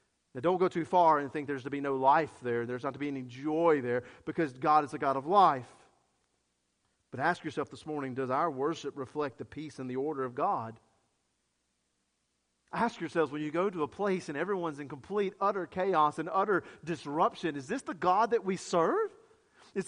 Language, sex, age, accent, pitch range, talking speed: English, male, 40-59, American, 115-170 Hz, 205 wpm